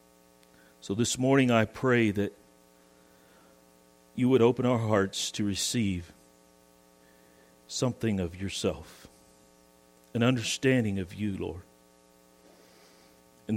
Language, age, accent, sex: English, 50-69, American, male